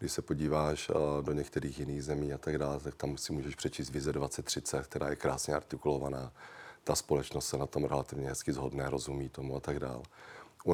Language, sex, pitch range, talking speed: Czech, male, 70-75 Hz, 195 wpm